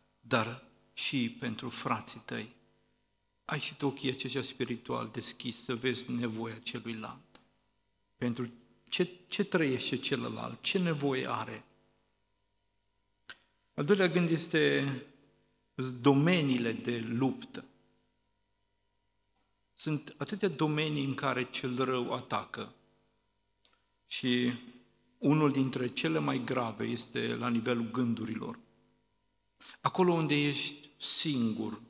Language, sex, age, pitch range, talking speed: Romanian, male, 50-69, 110-135 Hz, 100 wpm